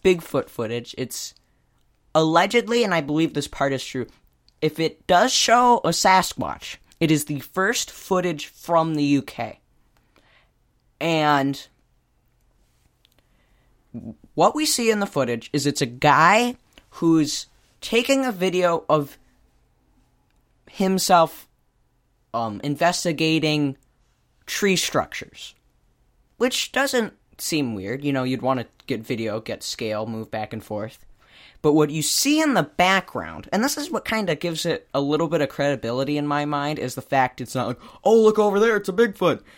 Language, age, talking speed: English, 10-29, 150 wpm